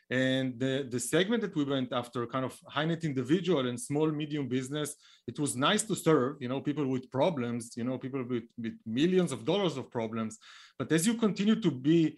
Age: 30-49